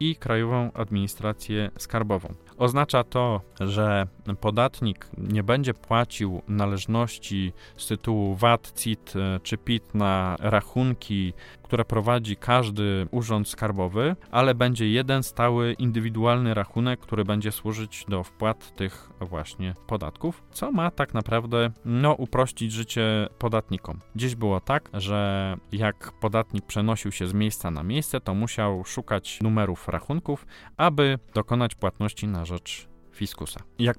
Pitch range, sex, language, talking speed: 100-120 Hz, male, Polish, 125 wpm